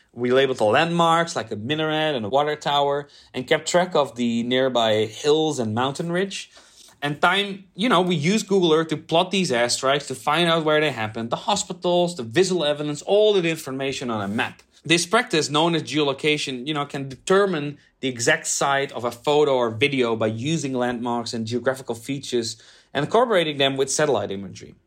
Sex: male